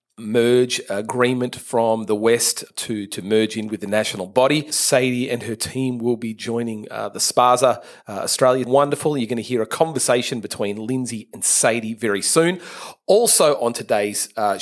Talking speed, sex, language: 170 wpm, male, English